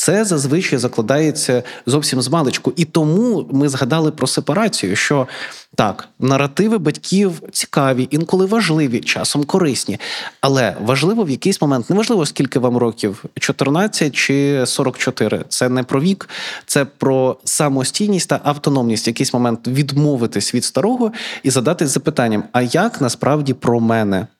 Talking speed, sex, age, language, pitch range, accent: 140 wpm, male, 20-39, Ukrainian, 125-160 Hz, native